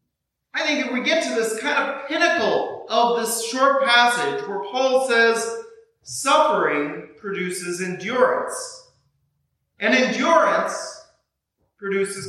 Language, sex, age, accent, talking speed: English, male, 40-59, American, 110 wpm